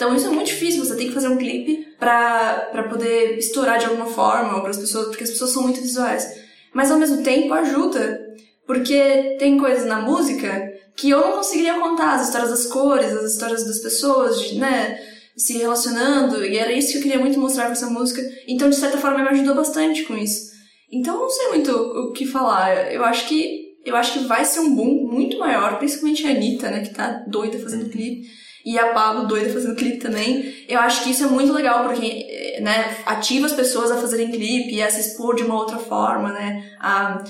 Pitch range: 225-270 Hz